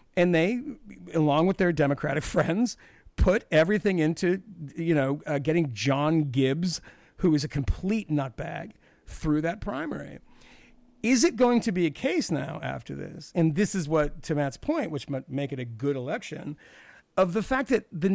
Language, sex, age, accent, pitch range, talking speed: English, male, 50-69, American, 145-210 Hz, 175 wpm